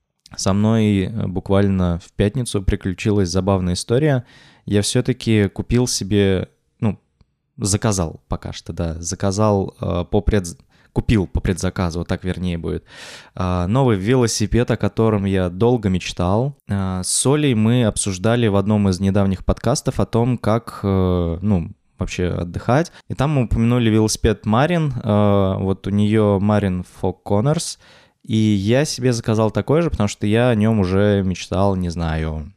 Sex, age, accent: male, 20-39, native